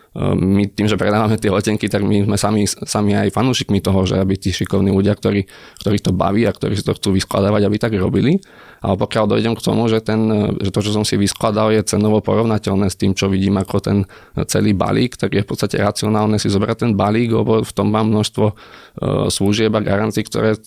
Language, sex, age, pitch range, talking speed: Slovak, male, 20-39, 100-110 Hz, 215 wpm